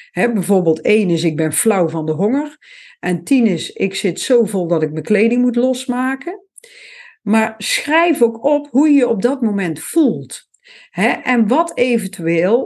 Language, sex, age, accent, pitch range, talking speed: Dutch, female, 50-69, Dutch, 210-280 Hz, 180 wpm